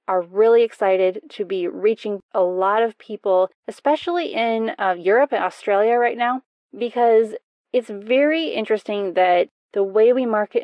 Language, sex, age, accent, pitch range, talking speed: English, female, 20-39, American, 190-235 Hz, 150 wpm